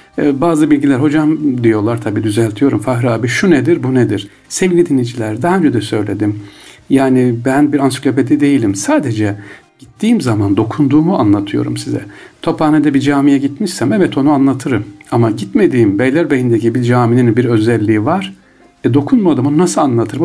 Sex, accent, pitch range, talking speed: male, native, 115-170 Hz, 145 wpm